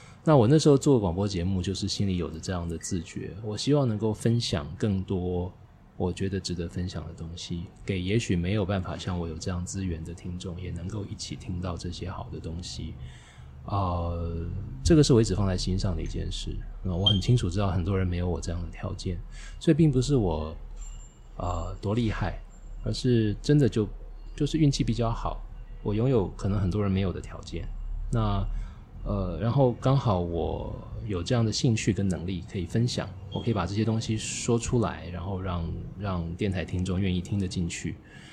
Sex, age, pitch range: male, 20-39, 90-110 Hz